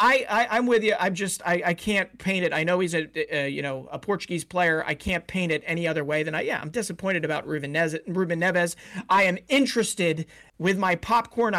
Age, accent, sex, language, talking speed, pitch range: 40-59, American, male, English, 235 wpm, 155-195 Hz